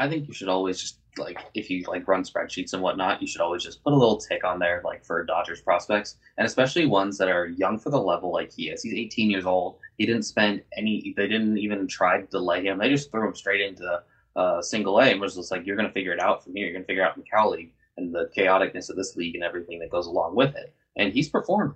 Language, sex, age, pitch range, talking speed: English, male, 20-39, 90-105 Hz, 275 wpm